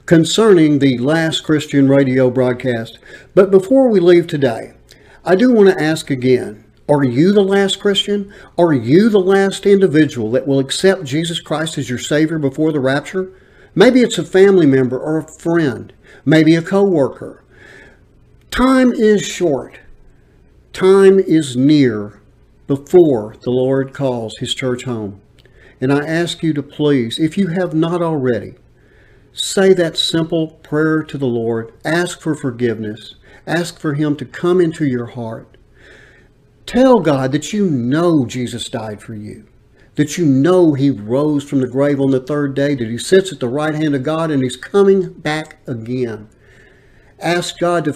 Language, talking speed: English, 160 wpm